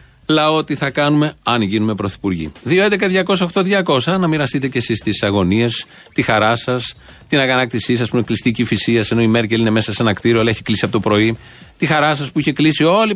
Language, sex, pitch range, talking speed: Greek, male, 115-155 Hz, 205 wpm